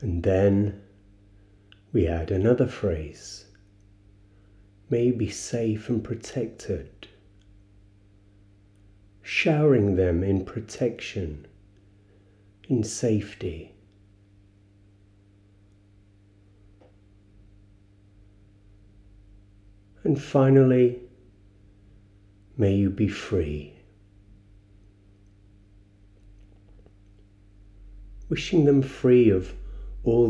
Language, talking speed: English, 55 wpm